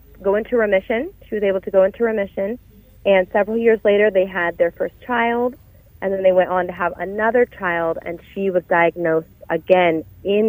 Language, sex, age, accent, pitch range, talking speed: English, female, 30-49, American, 180-205 Hz, 195 wpm